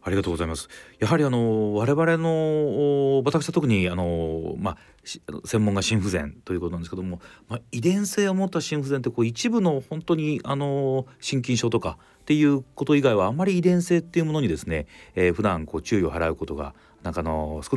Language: Japanese